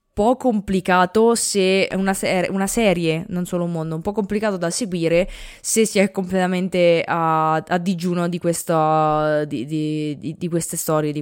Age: 20-39